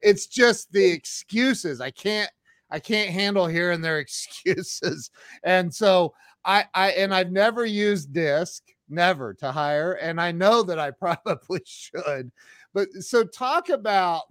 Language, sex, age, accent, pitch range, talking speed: English, male, 40-59, American, 140-195 Hz, 145 wpm